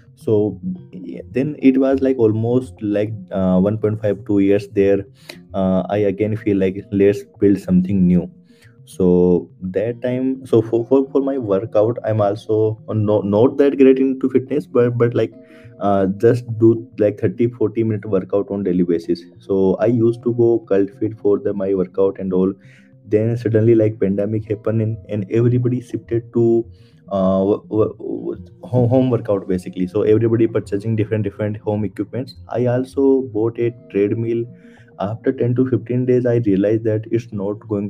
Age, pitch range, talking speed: 20-39, 95-115 Hz, 170 wpm